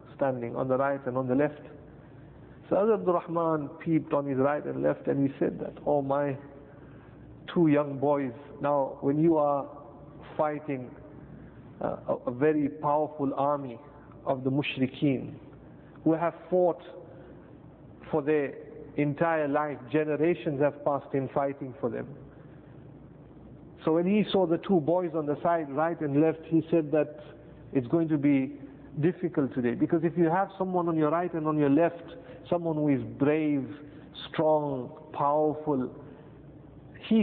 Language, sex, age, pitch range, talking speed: English, male, 50-69, 140-160 Hz, 155 wpm